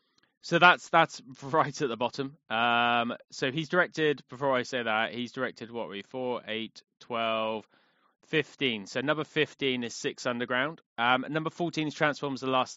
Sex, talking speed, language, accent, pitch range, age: male, 175 wpm, English, British, 120-150 Hz, 20-39